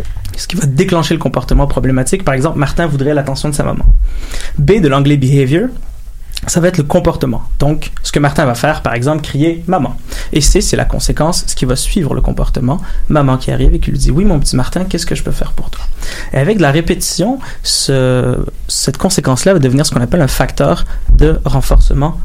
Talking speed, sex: 230 wpm, male